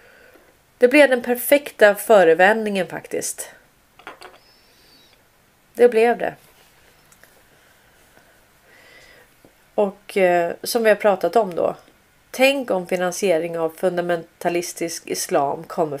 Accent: native